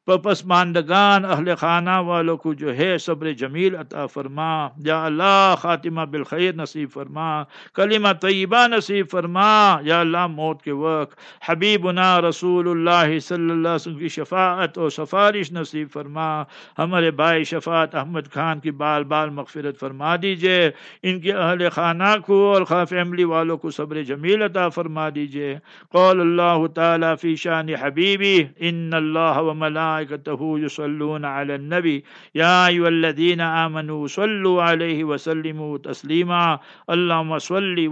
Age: 50-69